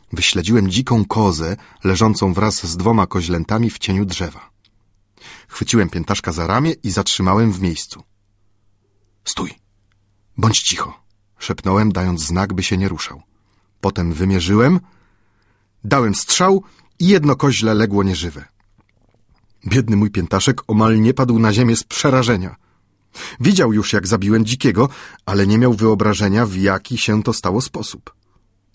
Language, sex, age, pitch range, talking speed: Polish, male, 40-59, 100-130 Hz, 130 wpm